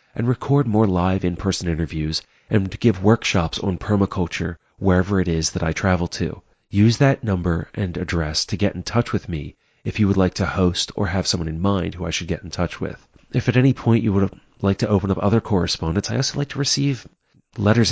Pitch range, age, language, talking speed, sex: 85-110 Hz, 30-49, English, 220 wpm, male